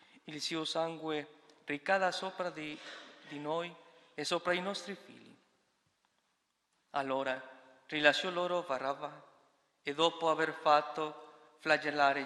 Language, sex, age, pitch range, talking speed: Italian, male, 40-59, 140-165 Hz, 110 wpm